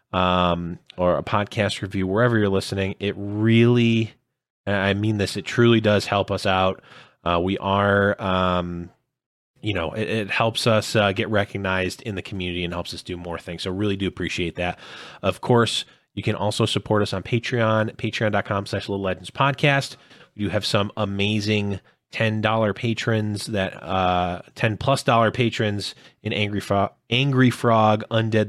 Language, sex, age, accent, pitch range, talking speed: English, male, 20-39, American, 95-110 Hz, 165 wpm